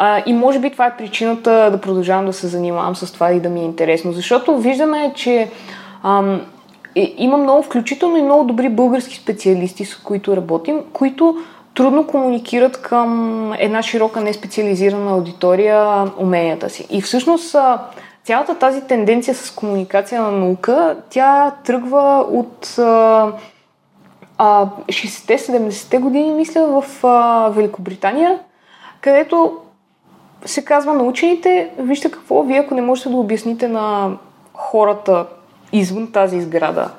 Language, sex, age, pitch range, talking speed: Bulgarian, female, 20-39, 200-270 Hz, 135 wpm